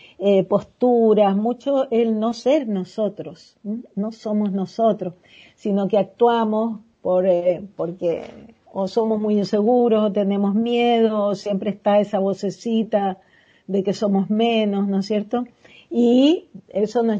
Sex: female